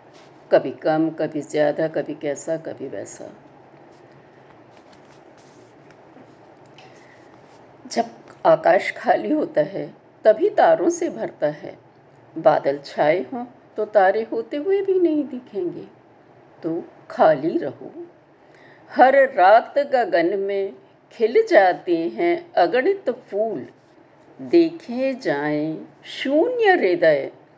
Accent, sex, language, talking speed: native, female, Hindi, 100 wpm